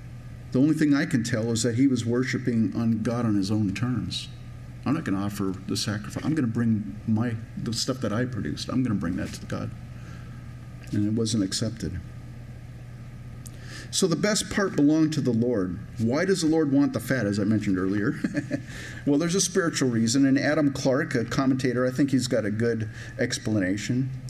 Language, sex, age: English, male, 50-69